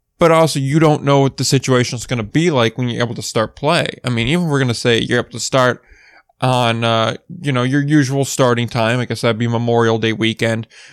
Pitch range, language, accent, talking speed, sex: 120-145 Hz, English, American, 255 wpm, male